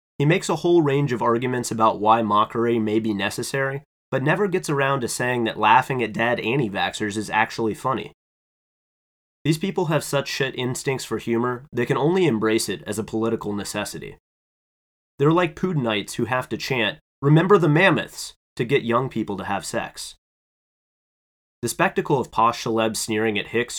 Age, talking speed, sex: 30-49, 175 wpm, male